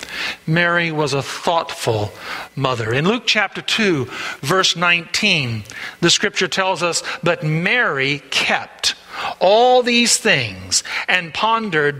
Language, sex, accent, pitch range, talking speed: English, male, American, 155-215 Hz, 115 wpm